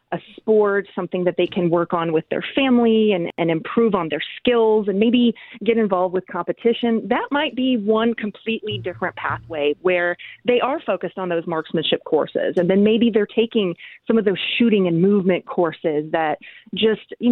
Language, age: English, 30-49